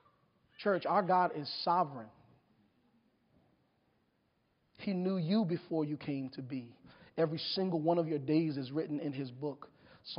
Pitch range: 170-250 Hz